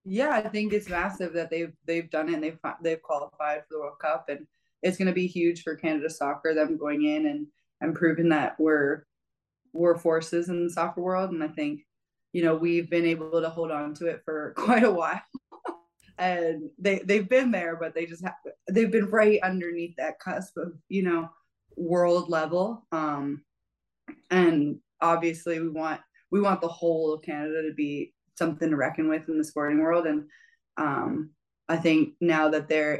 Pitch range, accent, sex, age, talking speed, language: 155-175 Hz, American, female, 20-39, 195 wpm, English